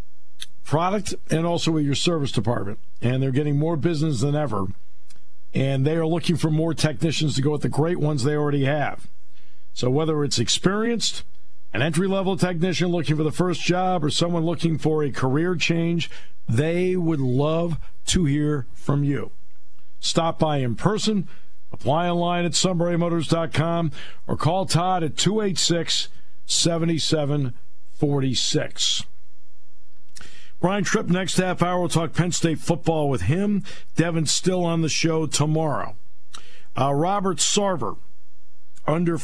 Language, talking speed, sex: English, 140 wpm, male